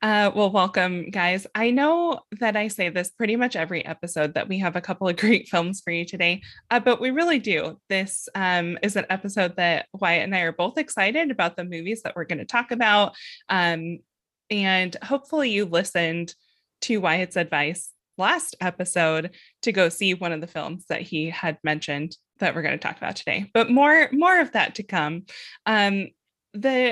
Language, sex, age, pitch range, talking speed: English, female, 20-39, 175-245 Hz, 195 wpm